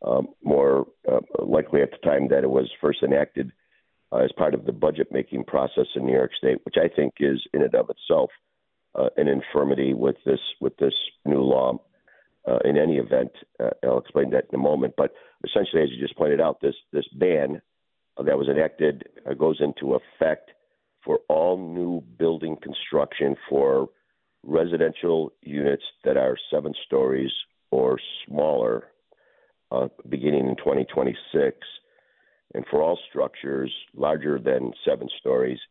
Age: 50-69